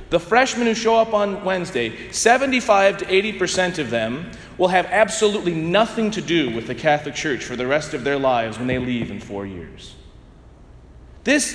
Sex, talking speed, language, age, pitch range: male, 180 wpm, English, 40-59, 175-245 Hz